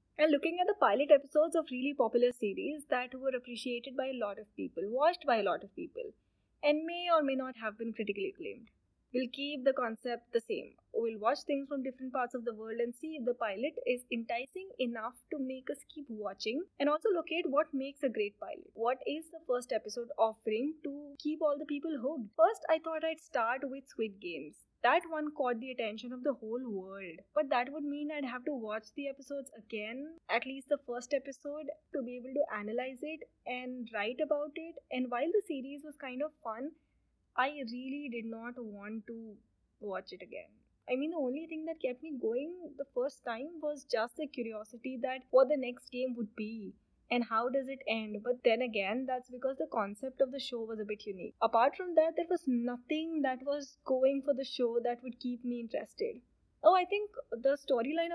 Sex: female